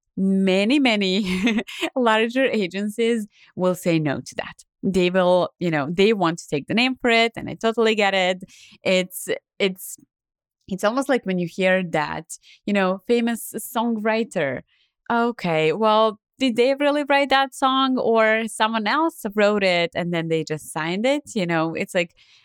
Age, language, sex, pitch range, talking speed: 20-39, English, female, 165-225 Hz, 165 wpm